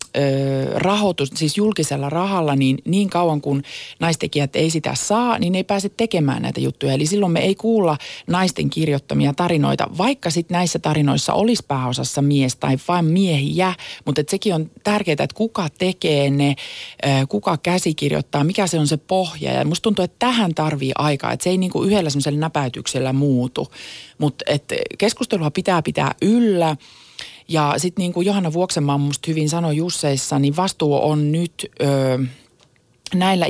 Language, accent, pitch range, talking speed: Finnish, native, 140-185 Hz, 160 wpm